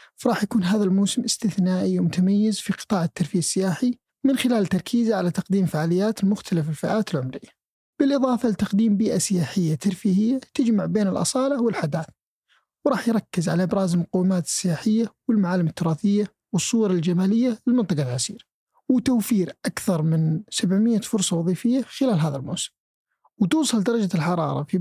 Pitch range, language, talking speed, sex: 160-215 Hz, Arabic, 130 wpm, male